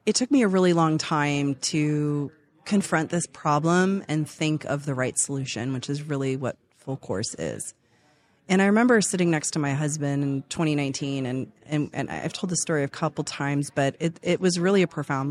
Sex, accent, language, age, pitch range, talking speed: female, American, English, 30-49, 145-170 Hz, 200 wpm